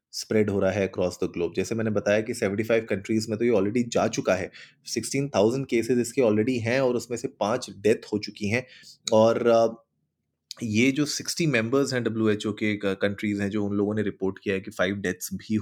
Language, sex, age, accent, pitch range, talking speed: Hindi, male, 20-39, native, 105-120 Hz, 210 wpm